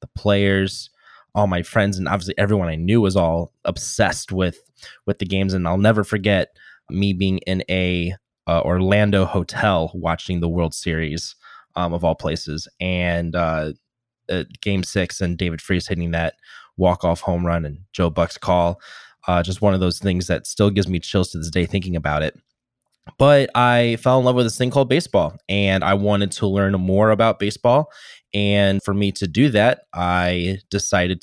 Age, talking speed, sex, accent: 20-39, 185 wpm, male, American